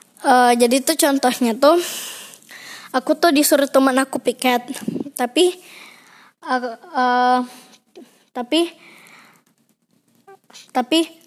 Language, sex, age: Indonesian, female, 20-39